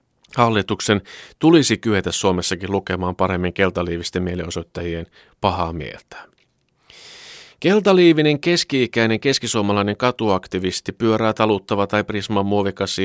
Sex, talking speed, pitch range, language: male, 85 wpm, 90-125 Hz, Finnish